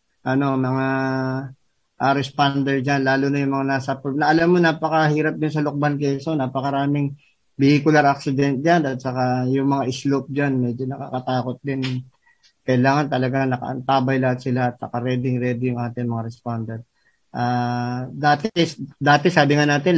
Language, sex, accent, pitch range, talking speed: Filipino, male, native, 130-150 Hz, 145 wpm